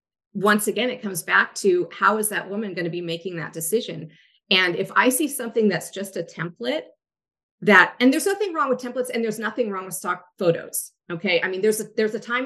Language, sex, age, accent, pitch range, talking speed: English, female, 30-49, American, 175-215 Hz, 225 wpm